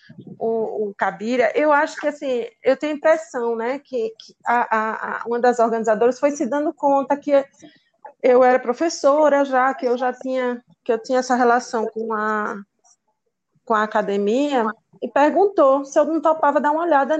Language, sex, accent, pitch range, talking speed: Portuguese, female, Brazilian, 230-280 Hz, 165 wpm